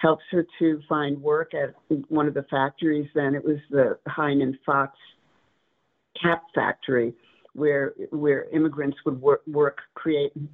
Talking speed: 150 wpm